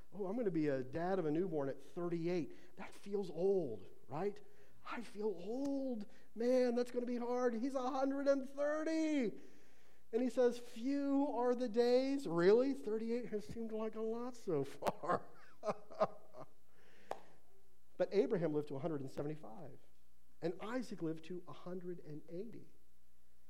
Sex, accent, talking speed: male, American, 135 wpm